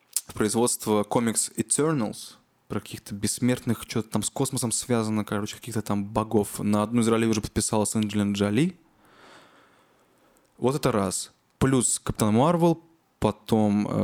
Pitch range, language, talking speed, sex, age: 105-125 Hz, Russian, 130 wpm, male, 20-39